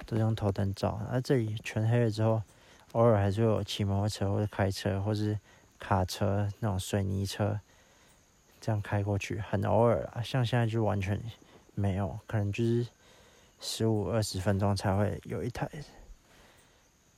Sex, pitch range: male, 100-115 Hz